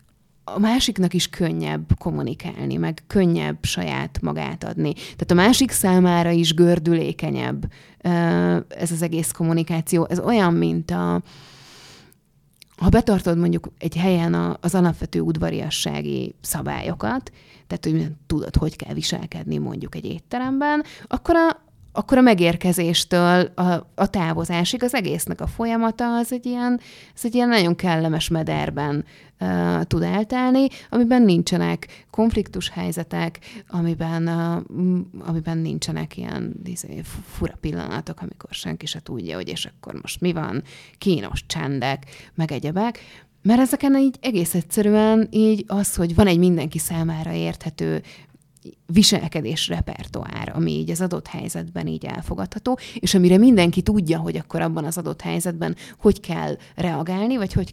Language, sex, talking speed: Hungarian, female, 135 wpm